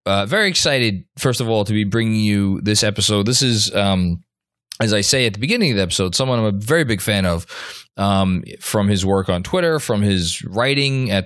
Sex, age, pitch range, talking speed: male, 20-39, 95-135 Hz, 220 wpm